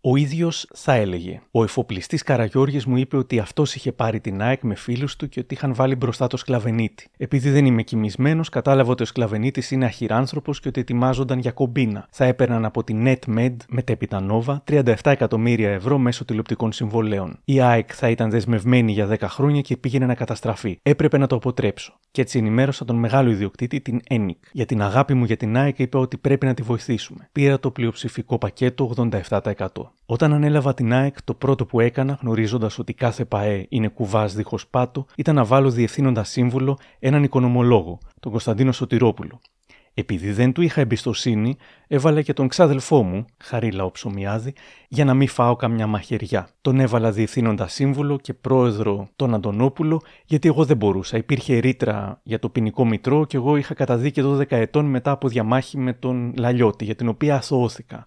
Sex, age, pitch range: male, 30-49, 115-135 Hz